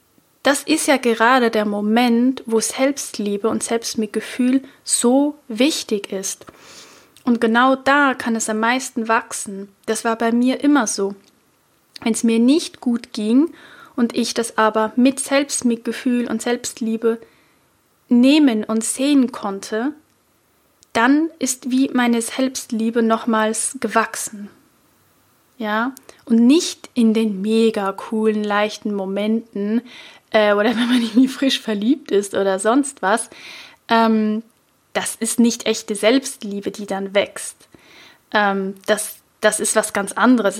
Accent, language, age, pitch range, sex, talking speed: German, German, 10-29, 215-250 Hz, female, 130 wpm